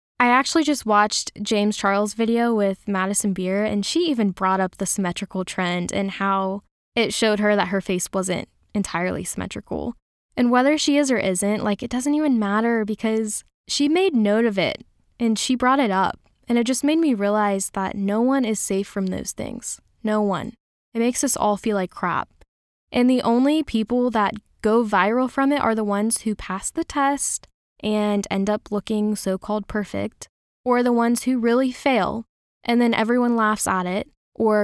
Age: 10-29